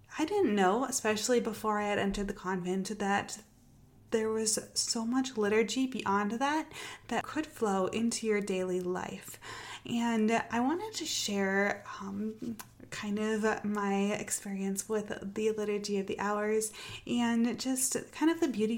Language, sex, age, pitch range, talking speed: English, female, 20-39, 200-240 Hz, 145 wpm